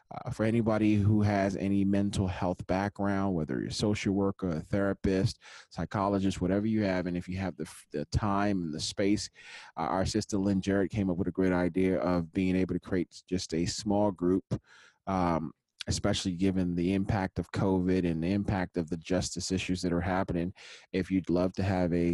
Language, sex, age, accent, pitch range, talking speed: English, male, 30-49, American, 90-100 Hz, 200 wpm